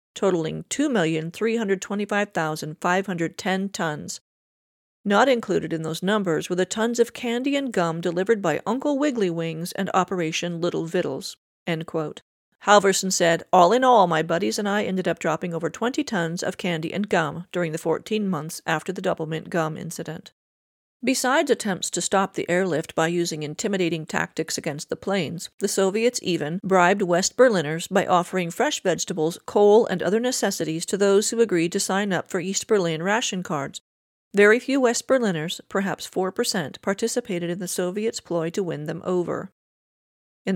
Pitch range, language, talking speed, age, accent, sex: 170-215 Hz, English, 165 wpm, 50-69, American, female